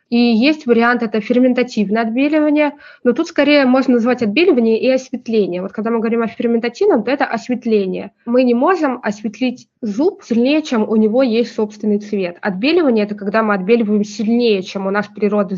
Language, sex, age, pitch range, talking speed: Russian, female, 20-39, 210-250 Hz, 180 wpm